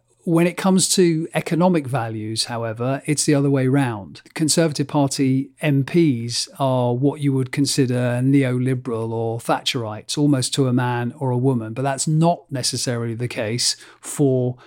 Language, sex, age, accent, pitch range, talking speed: English, male, 40-59, British, 125-145 Hz, 150 wpm